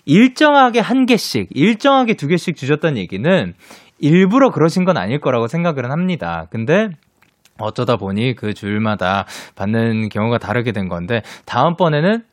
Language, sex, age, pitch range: Korean, male, 20-39, 100-160 Hz